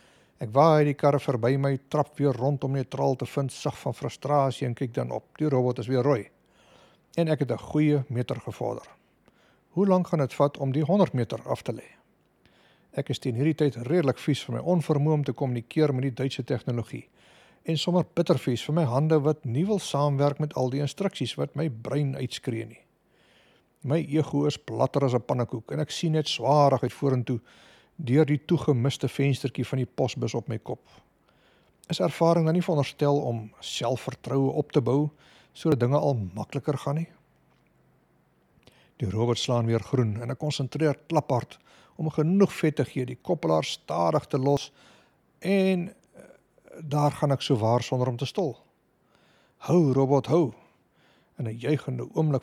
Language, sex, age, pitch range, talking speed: English, male, 60-79, 130-155 Hz, 180 wpm